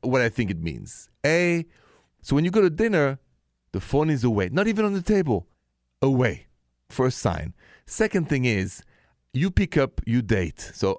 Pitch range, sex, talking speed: 95-135 Hz, male, 180 wpm